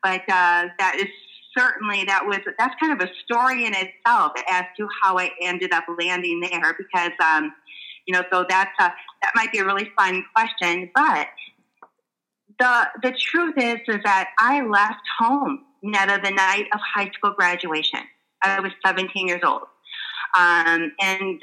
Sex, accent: female, American